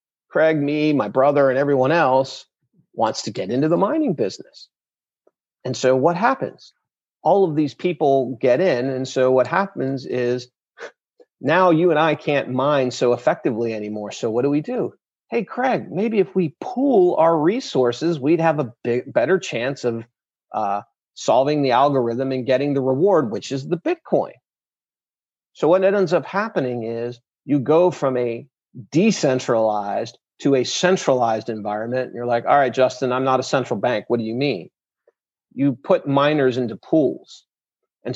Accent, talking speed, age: American, 165 wpm, 40-59